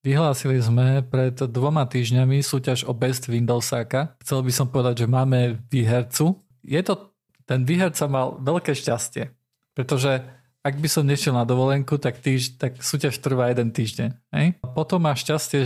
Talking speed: 160 wpm